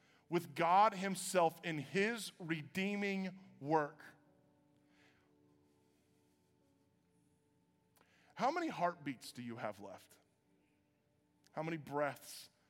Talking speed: 80 wpm